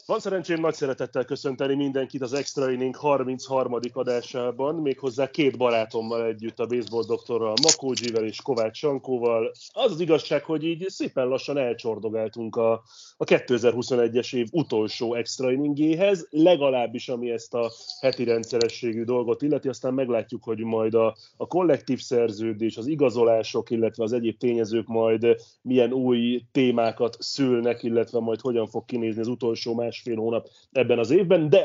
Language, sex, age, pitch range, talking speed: Hungarian, male, 30-49, 115-135 Hz, 145 wpm